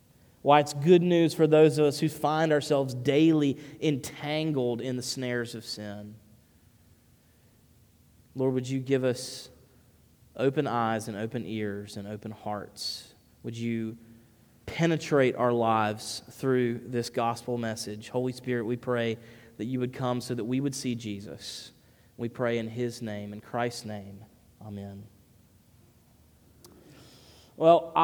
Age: 30-49